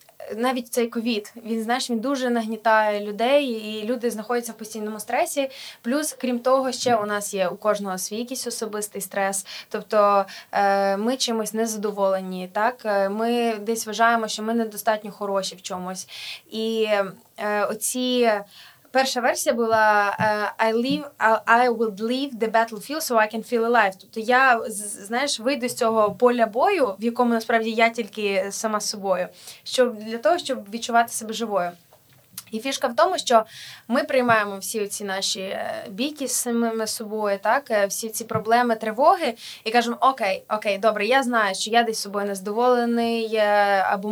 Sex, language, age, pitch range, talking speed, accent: female, Ukrainian, 20-39, 210-240 Hz, 150 wpm, native